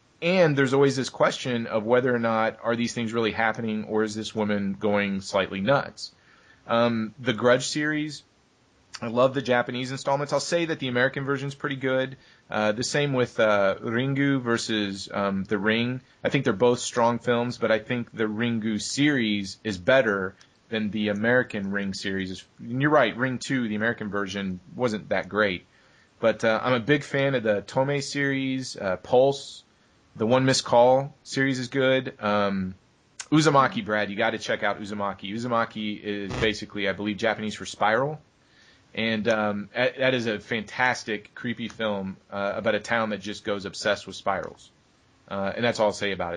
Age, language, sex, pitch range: 30-49, English, male, 105-130 Hz